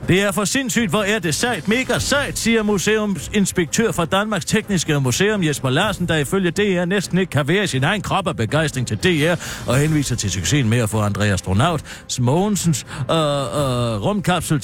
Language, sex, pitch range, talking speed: Danish, male, 130-190 Hz, 190 wpm